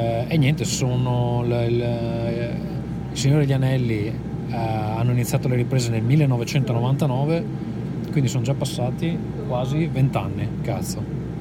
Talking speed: 110 wpm